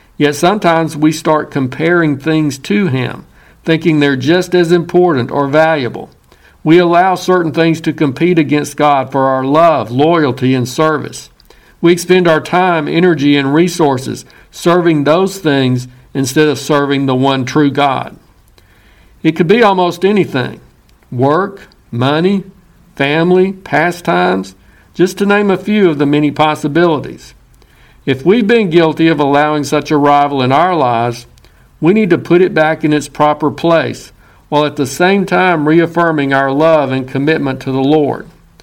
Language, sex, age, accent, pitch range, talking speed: English, male, 60-79, American, 140-175 Hz, 155 wpm